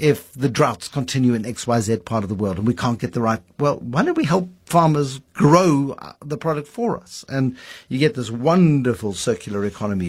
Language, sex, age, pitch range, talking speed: English, male, 60-79, 115-160 Hz, 215 wpm